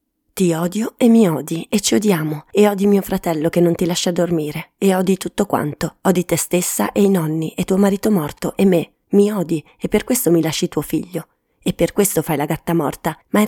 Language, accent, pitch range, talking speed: Italian, native, 155-190 Hz, 225 wpm